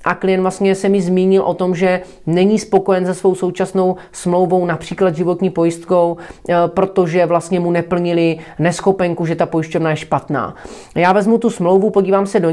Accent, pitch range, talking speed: native, 170-195 Hz, 170 wpm